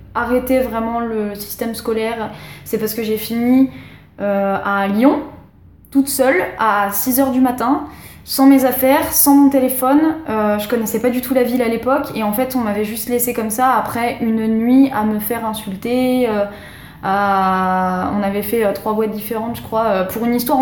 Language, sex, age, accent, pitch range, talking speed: French, female, 20-39, French, 205-250 Hz, 190 wpm